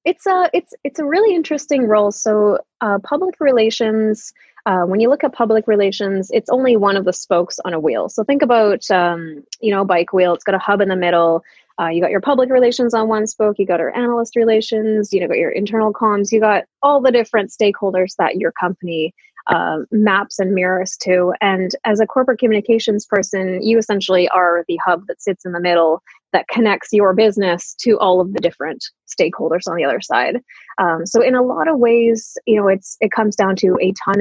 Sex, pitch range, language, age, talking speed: female, 180-225 Hz, English, 20-39, 215 wpm